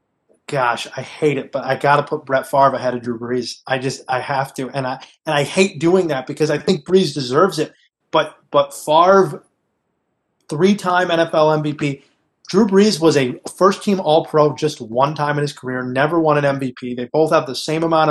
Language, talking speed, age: English, 200 wpm, 30-49